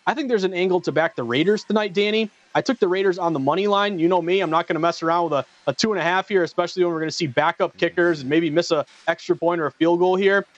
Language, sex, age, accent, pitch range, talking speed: English, male, 30-49, American, 160-200 Hz, 295 wpm